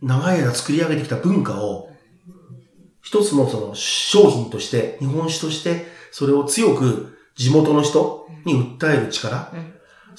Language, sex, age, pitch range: Japanese, male, 40-59, 130-195 Hz